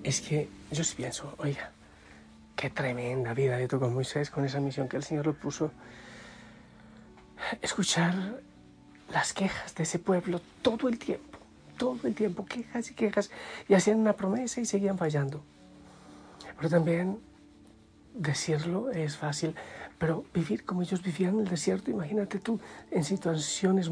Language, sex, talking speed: Spanish, male, 150 wpm